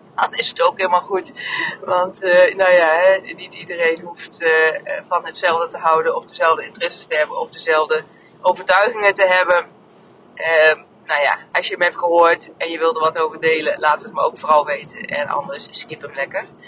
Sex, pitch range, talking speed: female, 170-210 Hz, 200 wpm